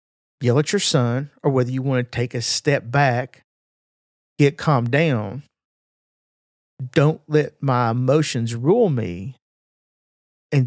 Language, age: English, 50-69